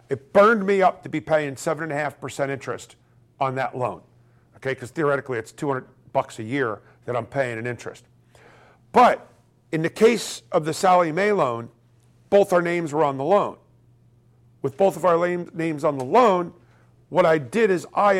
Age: 50-69